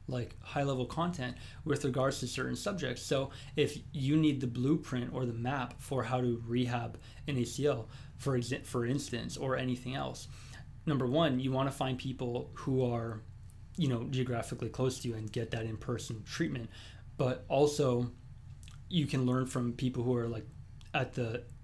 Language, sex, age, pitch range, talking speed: English, male, 20-39, 115-130 Hz, 170 wpm